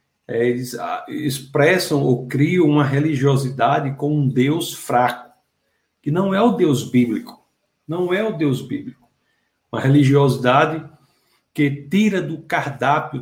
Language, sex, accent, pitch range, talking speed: Portuguese, male, Brazilian, 135-175 Hz, 125 wpm